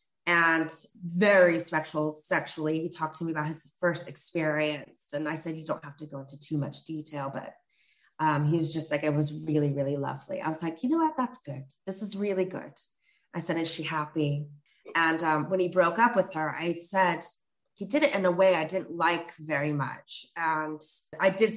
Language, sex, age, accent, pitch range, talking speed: English, female, 30-49, American, 155-190 Hz, 210 wpm